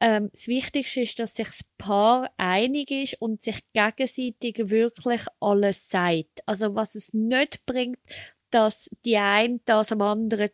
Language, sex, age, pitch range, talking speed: German, female, 20-39, 210-250 Hz, 150 wpm